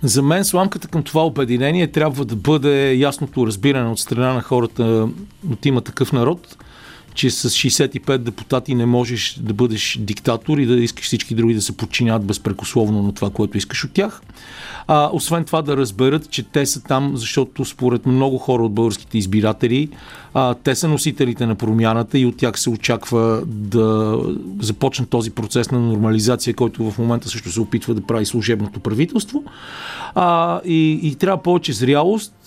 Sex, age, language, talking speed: male, 40-59, Bulgarian, 170 wpm